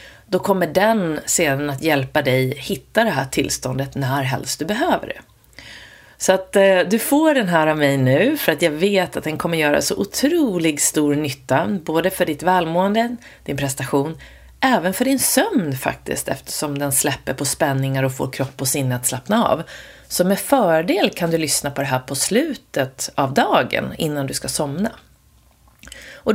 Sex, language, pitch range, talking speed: female, Swedish, 140-190 Hz, 180 wpm